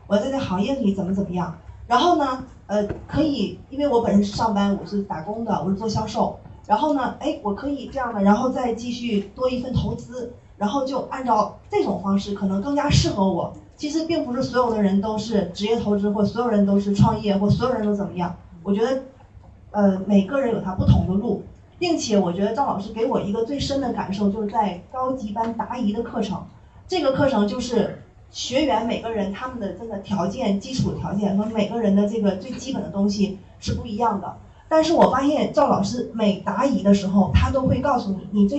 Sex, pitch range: female, 200-270 Hz